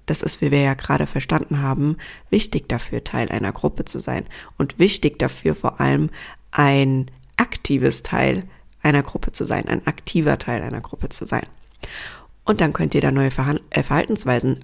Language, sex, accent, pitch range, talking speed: German, female, German, 130-165 Hz, 170 wpm